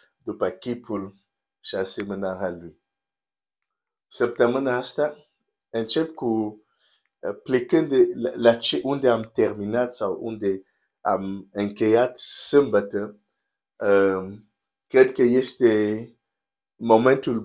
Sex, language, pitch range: male, Romanian, 105-135 Hz